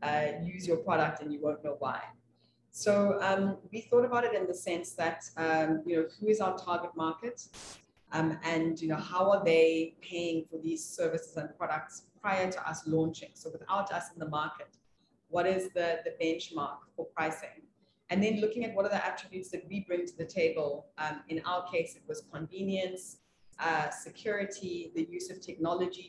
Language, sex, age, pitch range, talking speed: English, female, 30-49, 155-185 Hz, 195 wpm